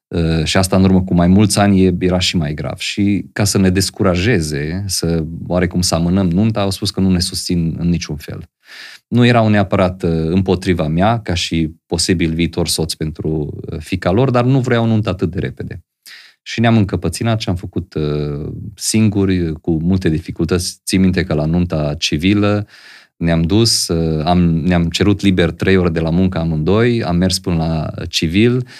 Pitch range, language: 85-100 Hz, Romanian